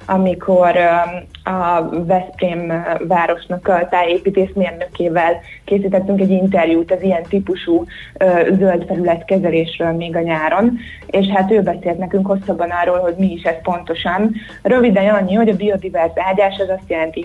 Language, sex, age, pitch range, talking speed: Hungarian, female, 20-39, 170-195 Hz, 130 wpm